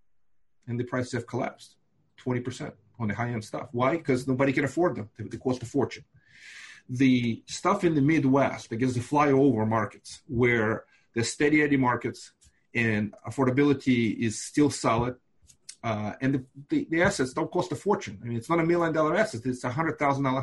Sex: male